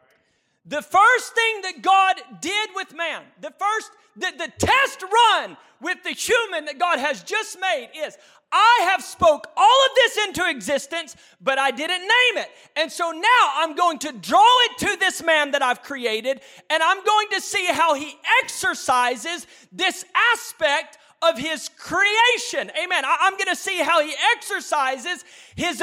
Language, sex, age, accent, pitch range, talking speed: English, male, 40-59, American, 280-390 Hz, 170 wpm